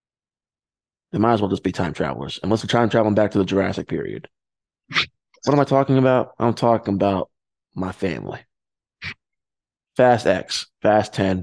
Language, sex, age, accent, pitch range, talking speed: English, male, 20-39, American, 100-130 Hz, 165 wpm